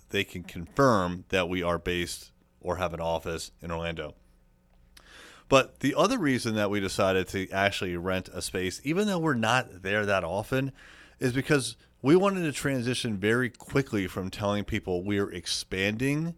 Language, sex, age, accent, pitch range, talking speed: English, male, 30-49, American, 90-125 Hz, 165 wpm